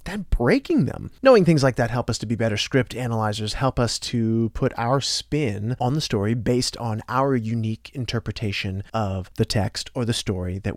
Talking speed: 195 wpm